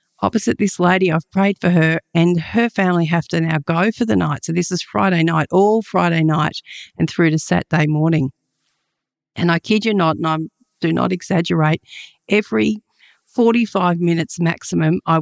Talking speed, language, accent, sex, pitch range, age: 180 wpm, English, Australian, female, 160-180 Hz, 50-69